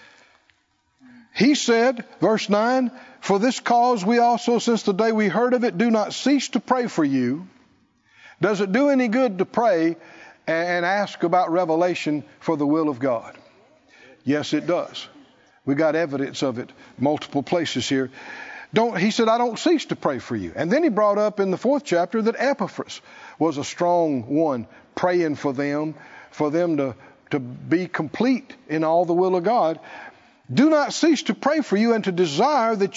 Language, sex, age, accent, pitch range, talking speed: English, male, 50-69, American, 170-255 Hz, 185 wpm